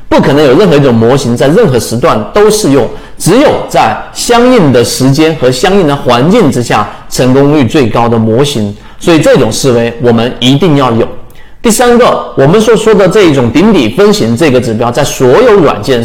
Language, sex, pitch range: Chinese, male, 120-190 Hz